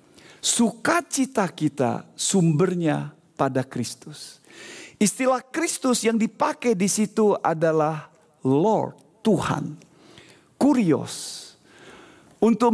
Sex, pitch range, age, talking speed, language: male, 155-245 Hz, 50-69, 75 wpm, Indonesian